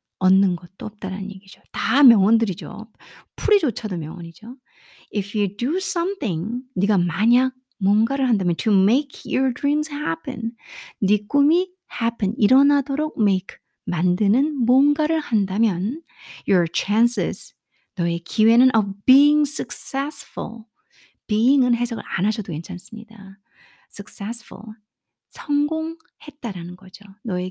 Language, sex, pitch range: Korean, female, 200-270 Hz